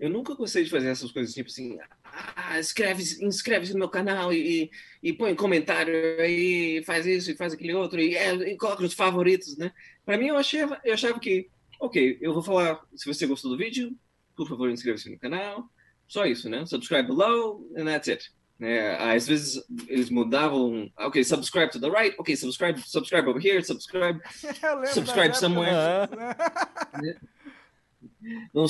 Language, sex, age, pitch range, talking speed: Portuguese, male, 20-39, 125-200 Hz, 175 wpm